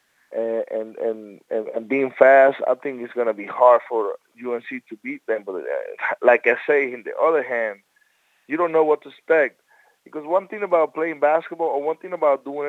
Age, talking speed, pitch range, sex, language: 20-39, 210 wpm, 145-185 Hz, male, English